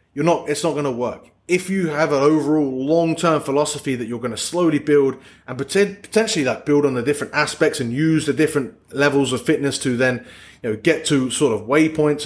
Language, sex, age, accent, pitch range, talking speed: English, male, 20-39, British, 130-160 Hz, 220 wpm